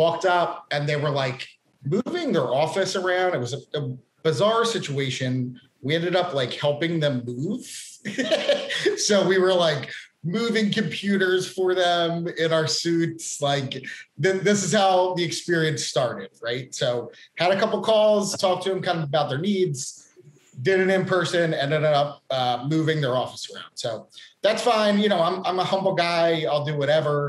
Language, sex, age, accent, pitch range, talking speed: English, male, 30-49, American, 135-180 Hz, 175 wpm